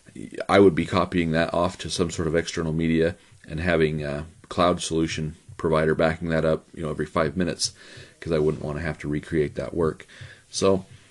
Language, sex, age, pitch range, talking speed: English, male, 30-49, 80-90 Hz, 200 wpm